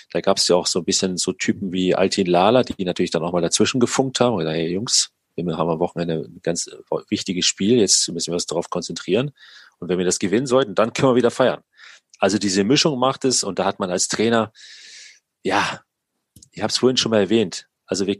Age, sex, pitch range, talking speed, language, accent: 40-59, male, 100-125 Hz, 230 wpm, German, German